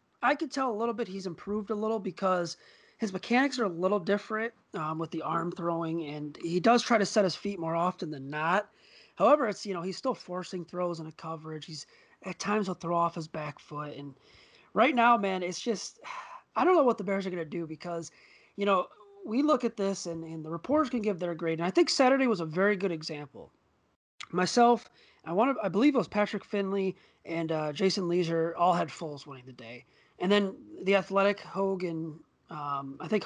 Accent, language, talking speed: American, English, 215 wpm